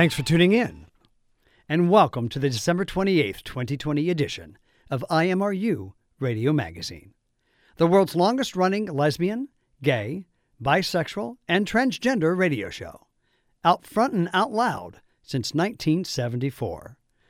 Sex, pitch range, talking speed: male, 130-200 Hz, 115 wpm